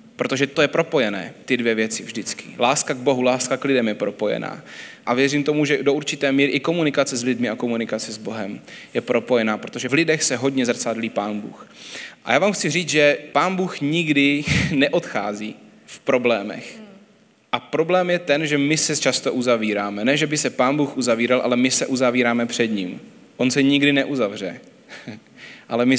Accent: native